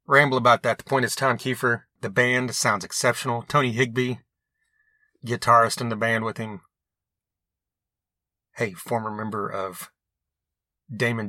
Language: English